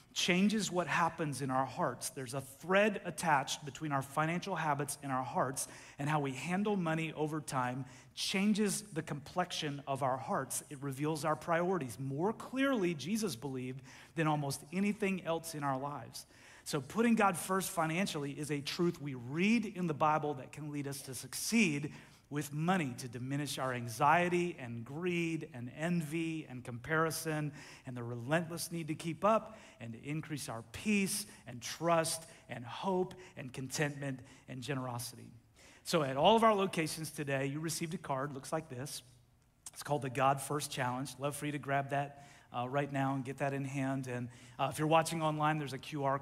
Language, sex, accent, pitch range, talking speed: English, male, American, 135-165 Hz, 180 wpm